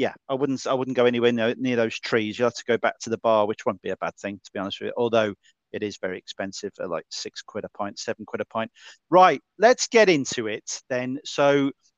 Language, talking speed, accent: English, 250 wpm, British